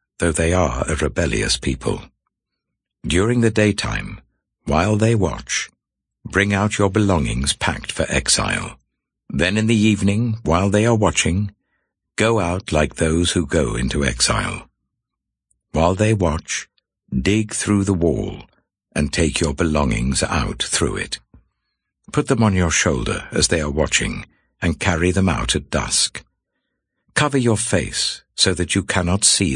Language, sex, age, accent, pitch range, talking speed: English, male, 60-79, British, 80-110 Hz, 145 wpm